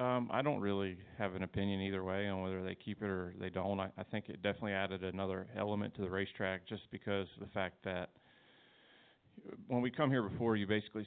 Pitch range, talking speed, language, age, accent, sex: 95-110 Hz, 220 wpm, English, 30-49, American, male